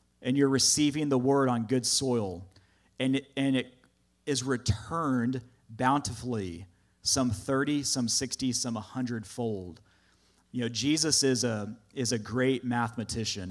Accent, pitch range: American, 105-135 Hz